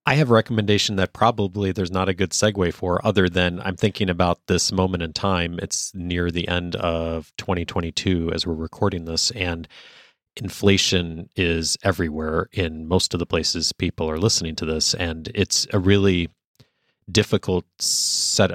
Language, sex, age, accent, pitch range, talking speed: English, male, 30-49, American, 90-105 Hz, 165 wpm